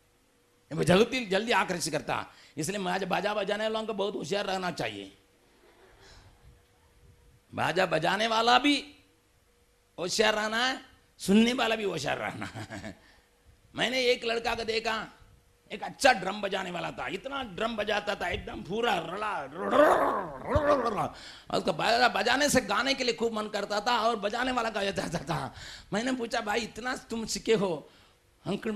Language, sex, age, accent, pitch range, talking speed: Hindi, male, 50-69, native, 180-230 Hz, 140 wpm